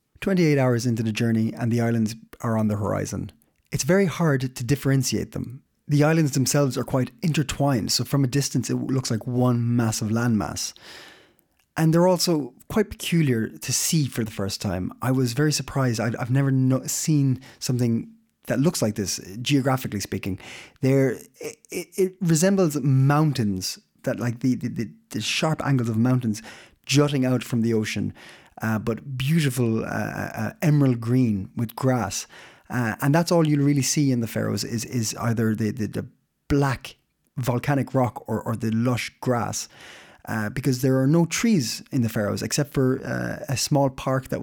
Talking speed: 175 wpm